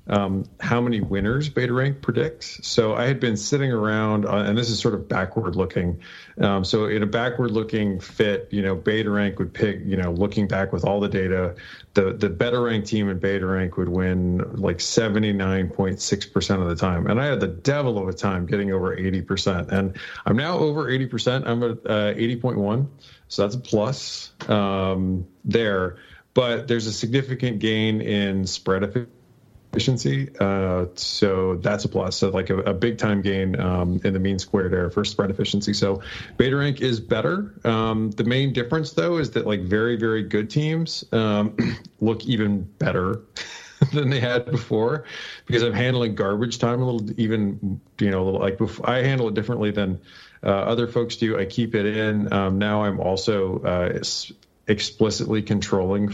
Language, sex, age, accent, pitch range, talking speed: English, male, 40-59, American, 95-120 Hz, 190 wpm